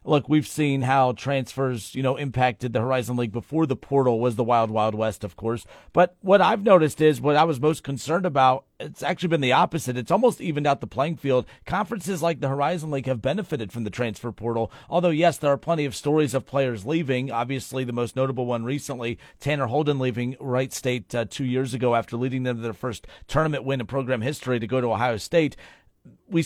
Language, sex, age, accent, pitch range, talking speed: English, male, 40-59, American, 125-155 Hz, 220 wpm